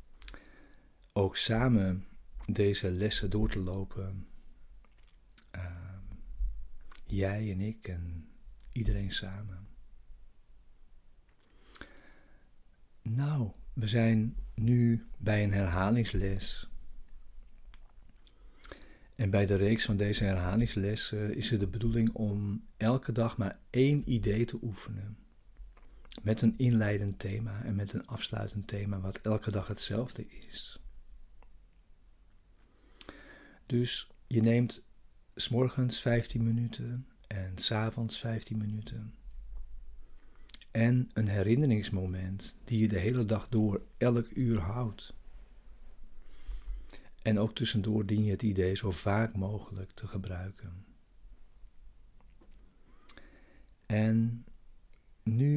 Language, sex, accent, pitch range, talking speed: Dutch, male, Dutch, 100-115 Hz, 95 wpm